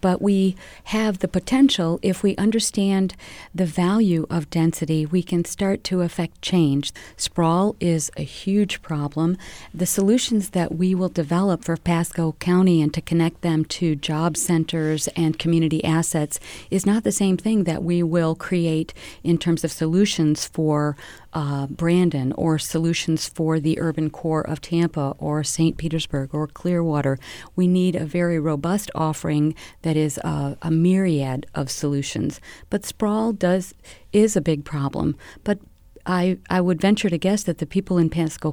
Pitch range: 155-180 Hz